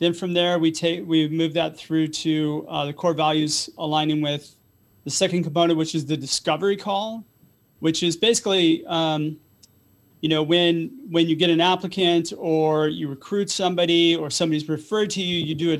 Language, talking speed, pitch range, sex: English, 180 wpm, 155-175 Hz, male